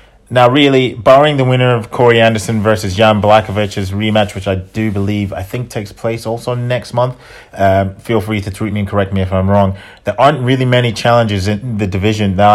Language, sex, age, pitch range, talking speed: English, male, 30-49, 95-110 Hz, 210 wpm